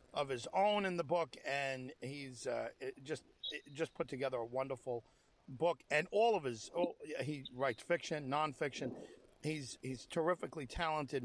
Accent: American